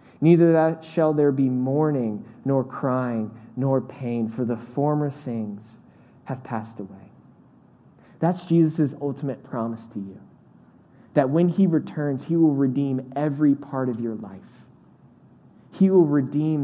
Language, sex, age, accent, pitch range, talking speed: English, male, 20-39, American, 115-145 Hz, 135 wpm